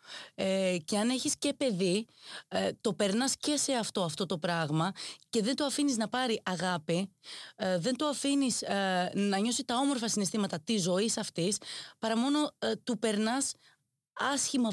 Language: Greek